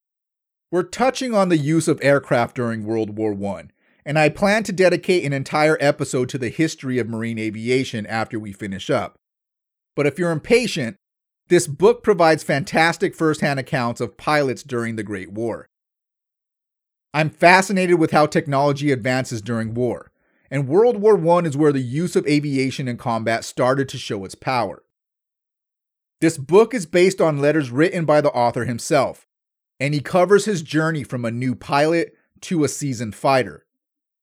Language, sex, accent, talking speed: English, male, American, 165 wpm